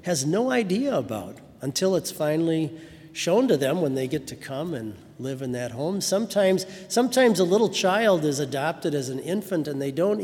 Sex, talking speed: male, 195 wpm